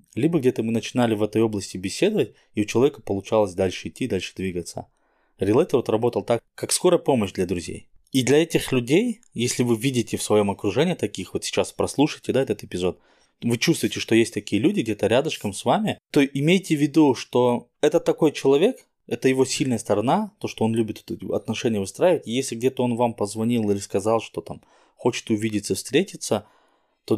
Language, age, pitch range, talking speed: Russian, 20-39, 100-125 Hz, 180 wpm